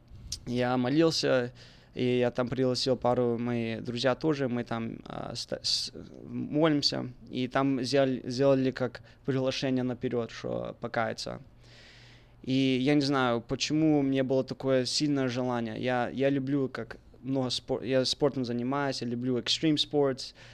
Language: Russian